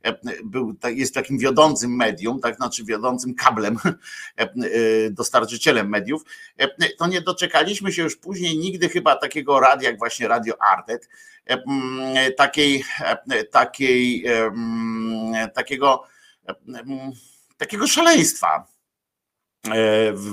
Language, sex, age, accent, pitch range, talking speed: Polish, male, 50-69, native, 110-150 Hz, 90 wpm